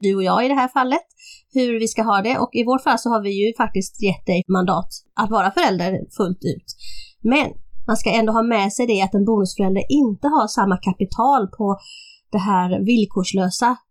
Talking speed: 205 wpm